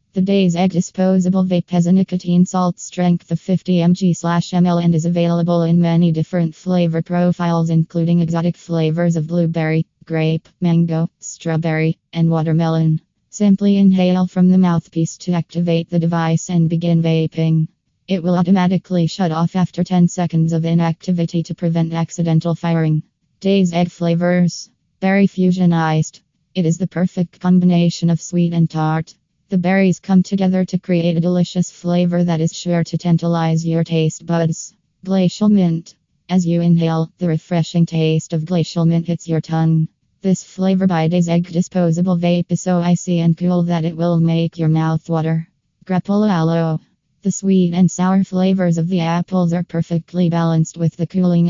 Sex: female